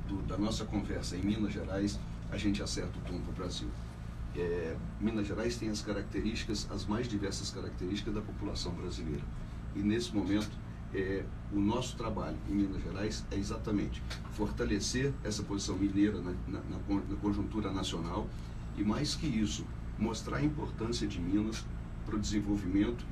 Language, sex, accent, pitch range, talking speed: Portuguese, male, Brazilian, 95-110 Hz, 160 wpm